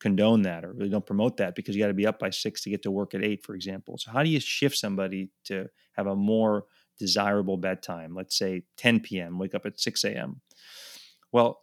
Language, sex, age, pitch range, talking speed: English, male, 30-49, 100-115 Hz, 230 wpm